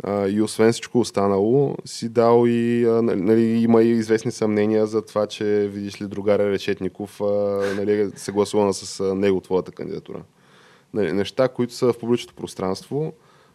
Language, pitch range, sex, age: Bulgarian, 95-115 Hz, male, 20-39